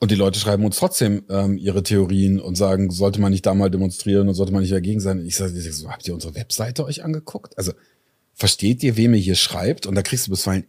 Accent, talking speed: German, 265 wpm